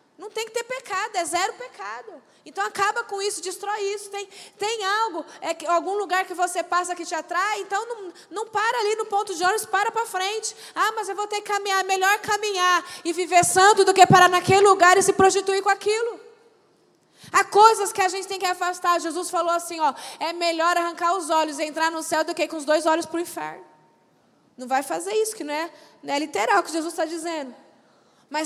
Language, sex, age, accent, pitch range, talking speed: Portuguese, female, 20-39, Brazilian, 265-385 Hz, 220 wpm